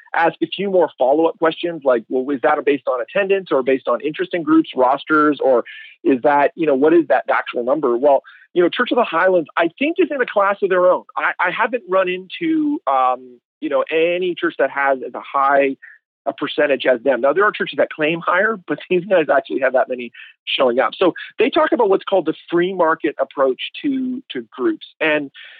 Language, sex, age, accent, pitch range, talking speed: English, male, 40-59, American, 145-230 Hz, 225 wpm